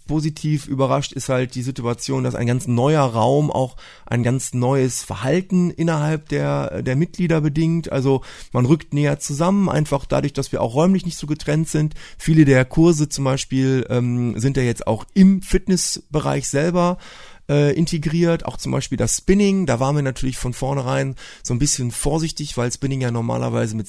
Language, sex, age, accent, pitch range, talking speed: German, male, 30-49, German, 120-150 Hz, 180 wpm